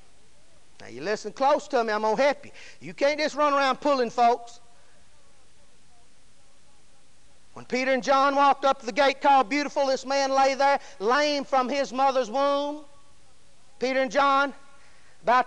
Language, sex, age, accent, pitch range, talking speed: English, male, 50-69, American, 260-320 Hz, 165 wpm